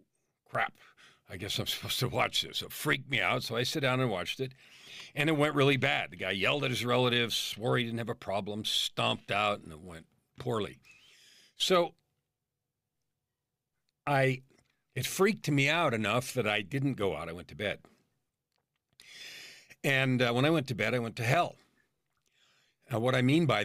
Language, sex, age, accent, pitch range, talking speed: English, male, 50-69, American, 110-135 Hz, 190 wpm